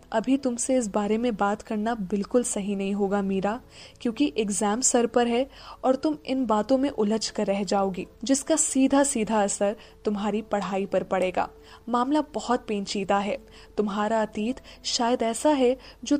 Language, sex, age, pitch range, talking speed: Hindi, female, 10-29, 205-265 Hz, 165 wpm